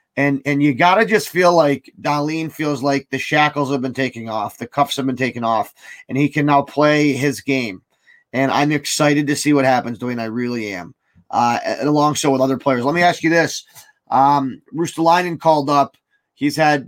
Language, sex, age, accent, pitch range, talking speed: English, male, 30-49, American, 140-160 Hz, 210 wpm